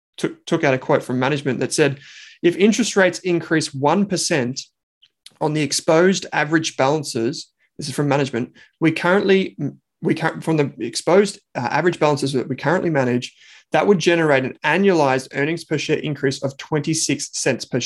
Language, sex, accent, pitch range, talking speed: English, male, Australian, 130-160 Hz, 165 wpm